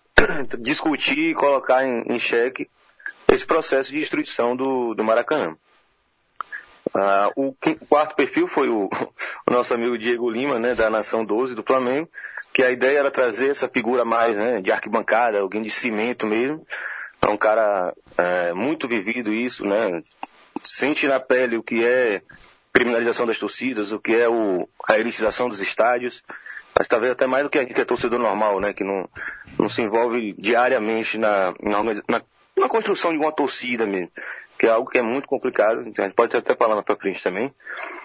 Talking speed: 175 wpm